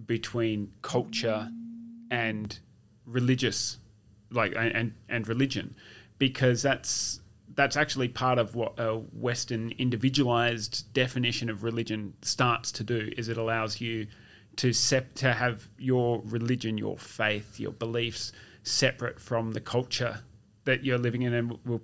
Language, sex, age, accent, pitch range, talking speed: English, male, 30-49, Australian, 110-125 Hz, 130 wpm